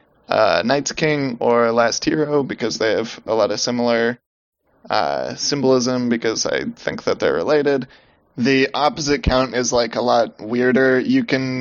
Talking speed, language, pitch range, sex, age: 160 wpm, English, 115-130 Hz, male, 20-39